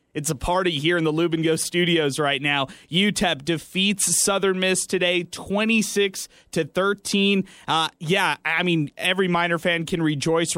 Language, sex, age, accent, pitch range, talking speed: English, male, 20-39, American, 155-180 Hz, 150 wpm